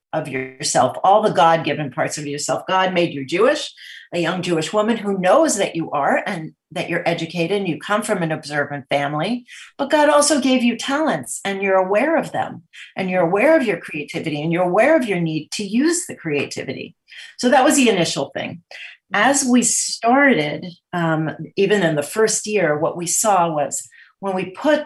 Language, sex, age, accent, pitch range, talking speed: English, female, 40-59, American, 160-215 Hz, 195 wpm